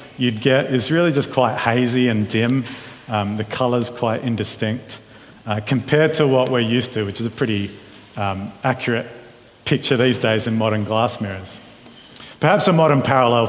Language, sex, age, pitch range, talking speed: English, male, 40-59, 115-135 Hz, 170 wpm